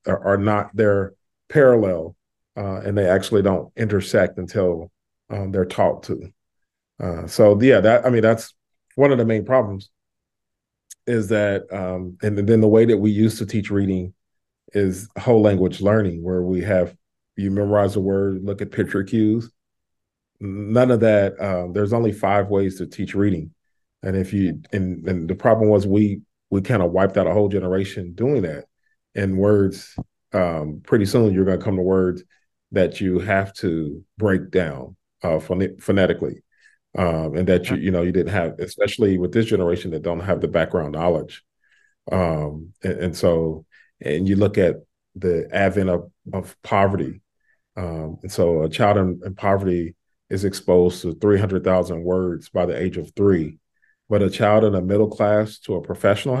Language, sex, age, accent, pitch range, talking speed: English, male, 40-59, American, 90-105 Hz, 180 wpm